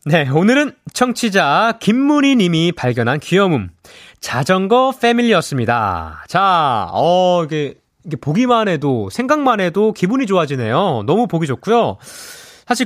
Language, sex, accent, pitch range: Korean, male, native, 145-240 Hz